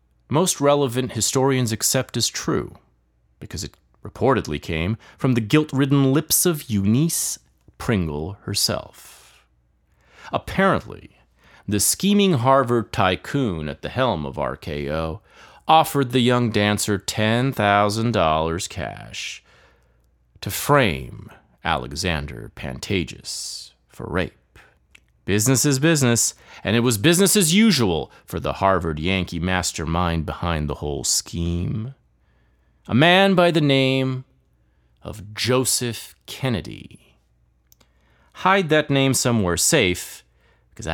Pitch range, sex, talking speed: 80-130 Hz, male, 105 wpm